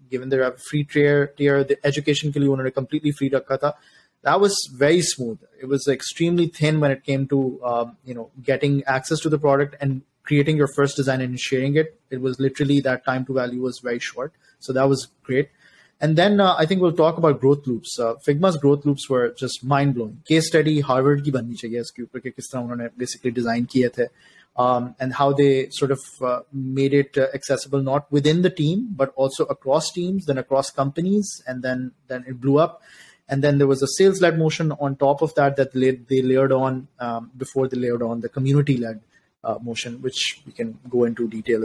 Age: 20-39